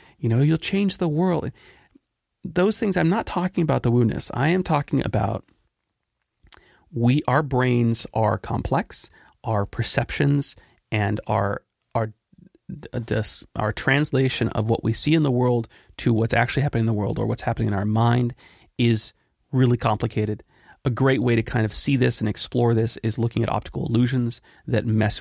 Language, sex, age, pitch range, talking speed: English, male, 30-49, 100-120 Hz, 165 wpm